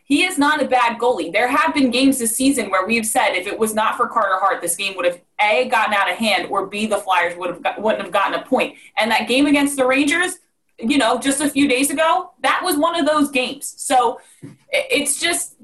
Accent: American